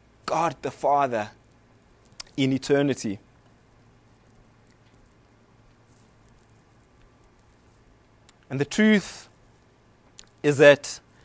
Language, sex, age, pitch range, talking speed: English, male, 30-49, 130-210 Hz, 55 wpm